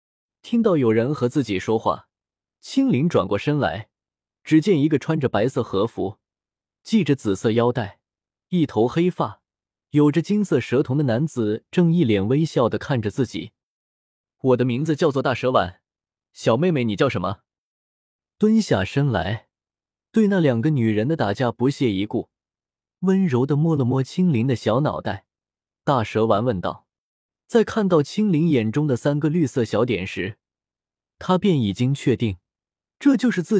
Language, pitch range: Chinese, 110-160 Hz